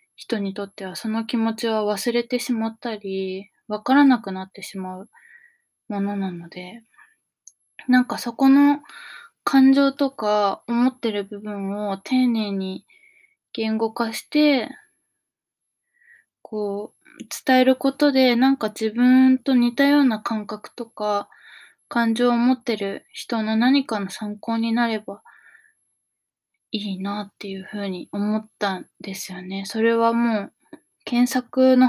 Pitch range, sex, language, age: 205-260 Hz, female, Japanese, 20-39